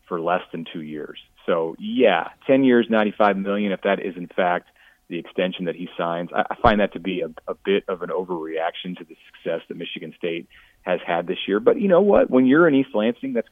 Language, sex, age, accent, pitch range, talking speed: English, male, 30-49, American, 90-130 Hz, 230 wpm